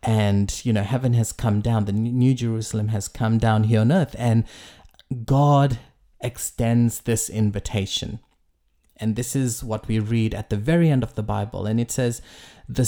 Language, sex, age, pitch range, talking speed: English, male, 30-49, 105-130 Hz, 175 wpm